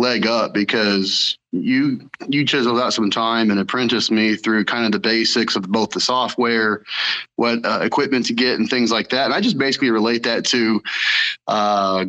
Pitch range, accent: 110-135 Hz, American